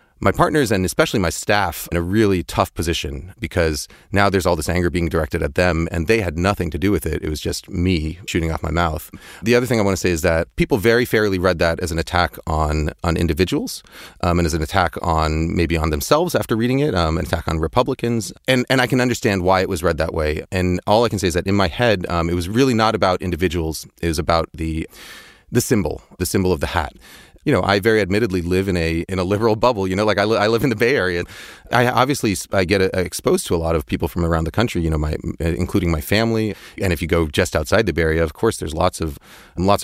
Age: 30-49